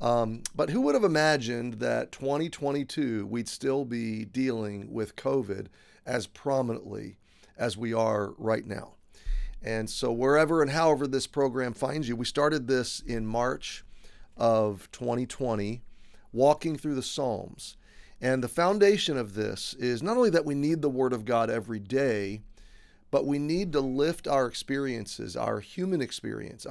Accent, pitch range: American, 115-145 Hz